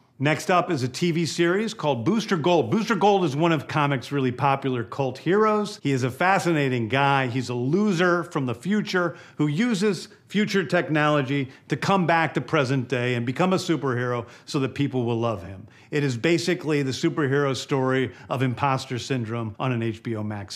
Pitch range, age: 130-165 Hz, 50-69